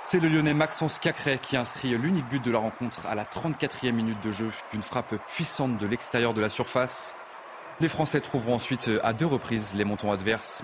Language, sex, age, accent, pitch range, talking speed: French, male, 30-49, French, 110-145 Hz, 205 wpm